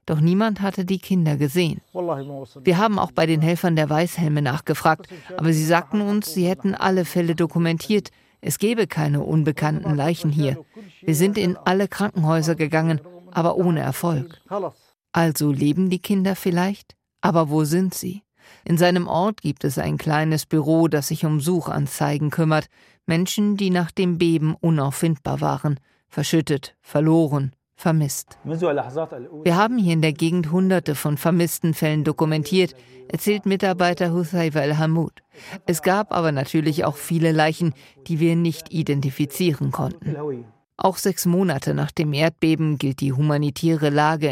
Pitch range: 150-180 Hz